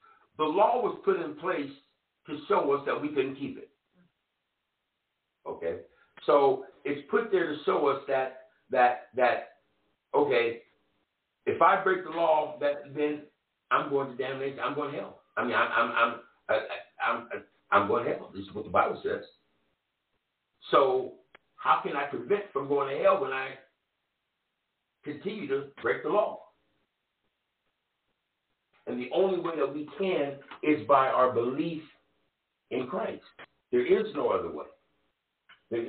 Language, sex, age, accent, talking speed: English, male, 60-79, American, 160 wpm